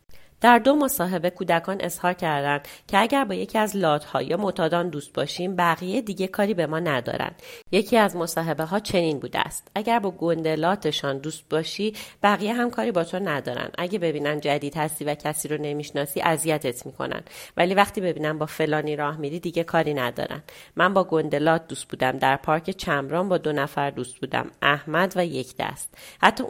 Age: 30-49